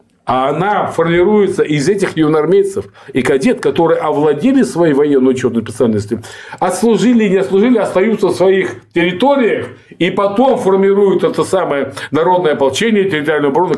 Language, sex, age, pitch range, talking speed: Russian, male, 50-69, 135-205 Hz, 135 wpm